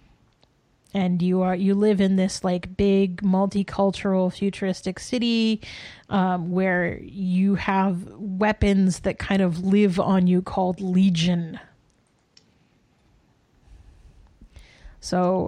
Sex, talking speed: female, 100 wpm